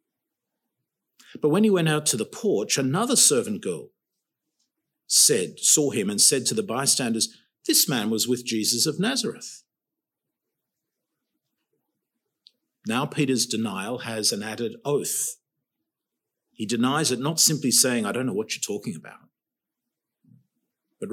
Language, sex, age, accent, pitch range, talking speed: English, male, 50-69, Australian, 125-180 Hz, 130 wpm